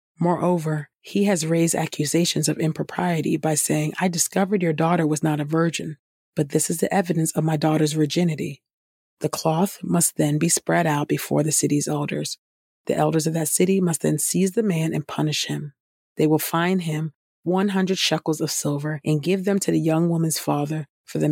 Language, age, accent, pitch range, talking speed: English, 40-59, American, 150-170 Hz, 190 wpm